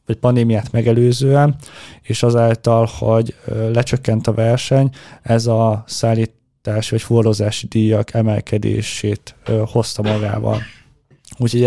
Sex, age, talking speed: male, 20-39, 100 wpm